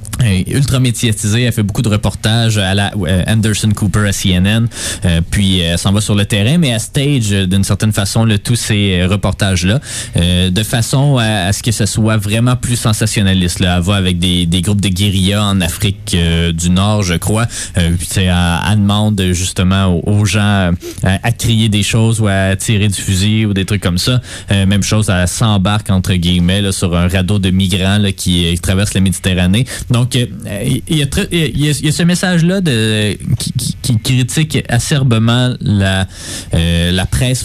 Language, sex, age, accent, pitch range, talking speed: French, male, 20-39, Canadian, 95-120 Hz, 180 wpm